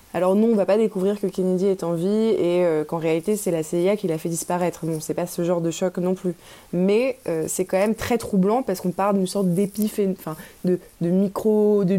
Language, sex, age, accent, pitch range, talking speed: French, female, 20-39, French, 170-200 Hz, 245 wpm